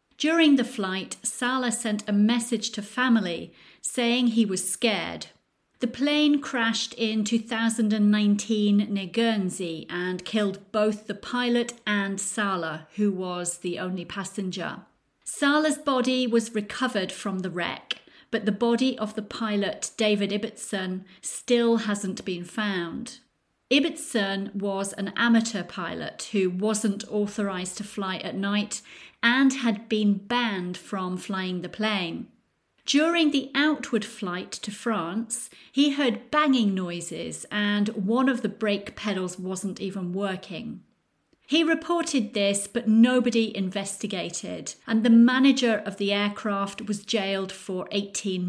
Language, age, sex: English, 40-59, female